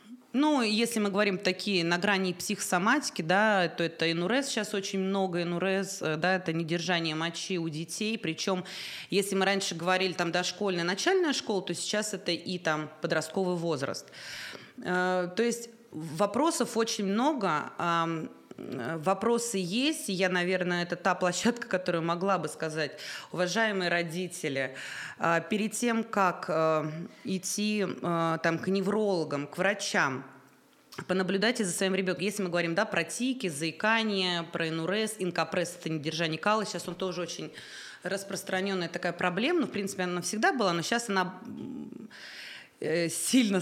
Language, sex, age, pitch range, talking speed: Russian, female, 20-39, 170-205 Hz, 140 wpm